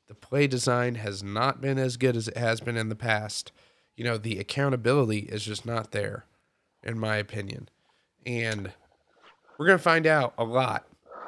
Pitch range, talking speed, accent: 110-130 Hz, 180 wpm, American